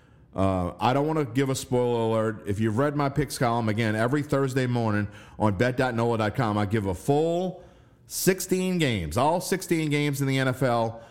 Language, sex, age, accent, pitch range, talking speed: English, male, 40-59, American, 110-145 Hz, 180 wpm